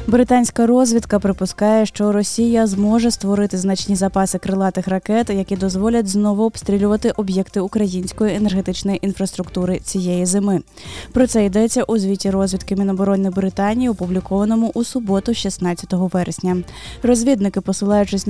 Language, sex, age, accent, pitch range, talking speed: Ukrainian, female, 20-39, native, 190-225 Hz, 120 wpm